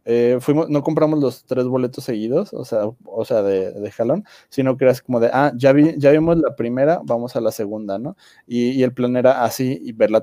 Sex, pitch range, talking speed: male, 115-140 Hz, 240 wpm